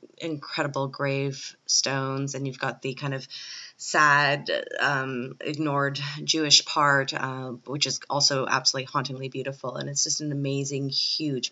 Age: 20-39